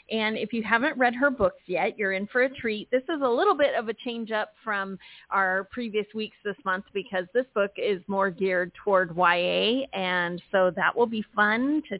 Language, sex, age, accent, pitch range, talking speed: English, female, 40-59, American, 195-250 Hz, 215 wpm